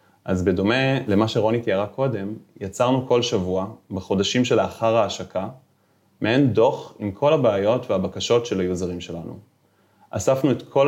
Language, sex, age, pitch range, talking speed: Hebrew, male, 20-39, 100-125 Hz, 130 wpm